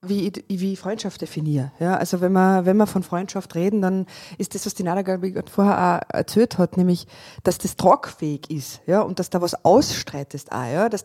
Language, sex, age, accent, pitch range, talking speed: German, female, 20-39, German, 170-210 Hz, 200 wpm